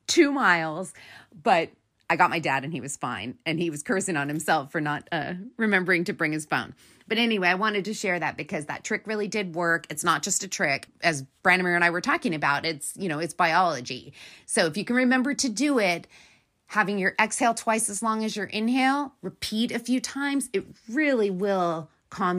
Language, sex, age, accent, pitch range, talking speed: English, female, 30-49, American, 165-220 Hz, 215 wpm